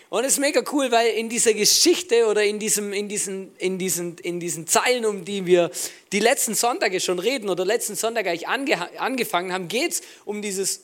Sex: male